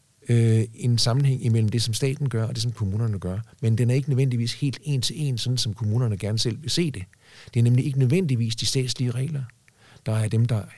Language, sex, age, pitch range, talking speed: Danish, male, 50-69, 110-130 Hz, 235 wpm